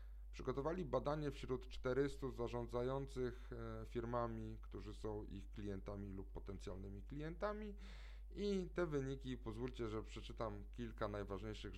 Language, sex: Polish, male